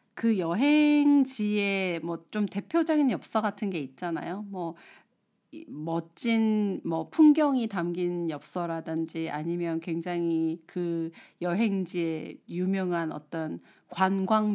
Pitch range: 170-235 Hz